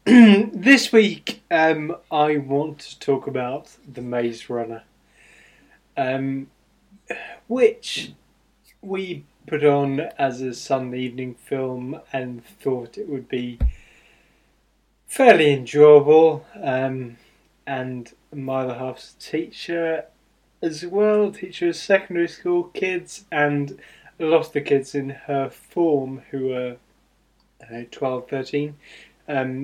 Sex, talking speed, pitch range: male, 115 wpm, 125-150 Hz